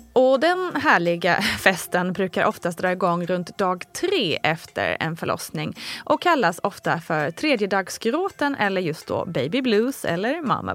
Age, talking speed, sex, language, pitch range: 20-39, 145 wpm, female, Swedish, 180-260 Hz